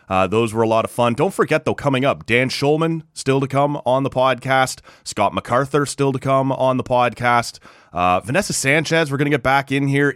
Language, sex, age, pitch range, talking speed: English, male, 30-49, 90-130 Hz, 225 wpm